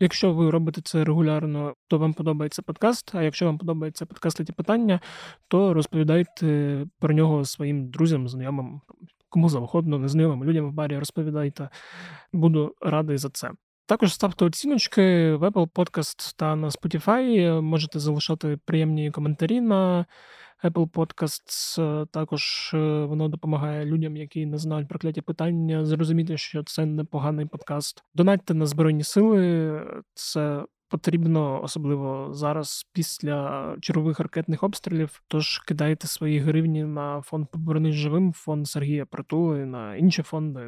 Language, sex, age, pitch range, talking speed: Ukrainian, male, 20-39, 150-165 Hz, 135 wpm